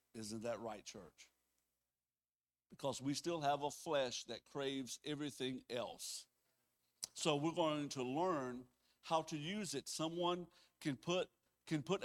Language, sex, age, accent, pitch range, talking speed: English, male, 60-79, American, 140-185 Hz, 140 wpm